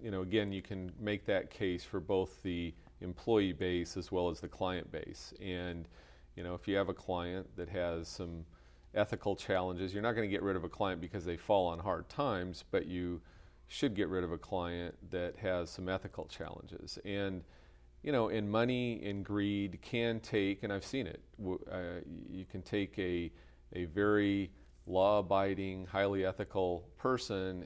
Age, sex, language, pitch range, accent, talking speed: 40-59, male, English, 90-100 Hz, American, 180 wpm